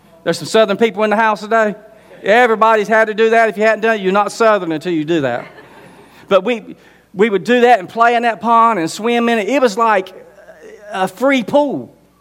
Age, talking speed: 40-59, 230 wpm